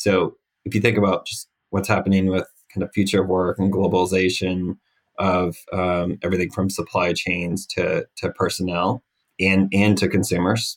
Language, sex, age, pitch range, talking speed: English, male, 20-39, 85-100 Hz, 155 wpm